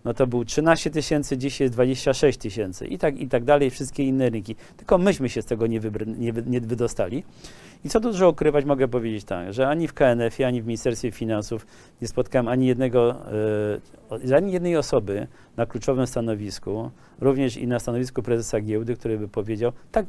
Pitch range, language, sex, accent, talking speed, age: 120-150 Hz, Polish, male, native, 190 wpm, 40-59